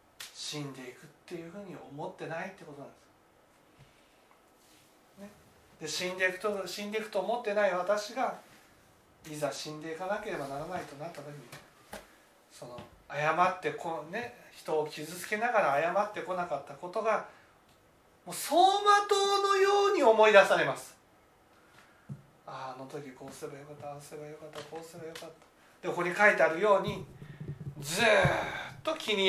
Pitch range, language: 145-220 Hz, Japanese